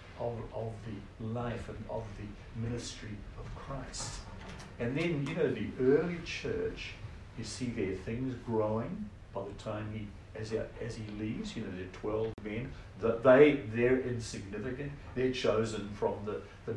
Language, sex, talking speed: English, male, 155 wpm